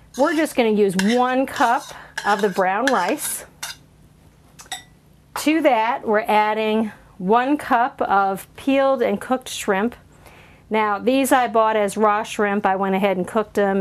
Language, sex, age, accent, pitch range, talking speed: English, female, 40-59, American, 195-245 Hz, 150 wpm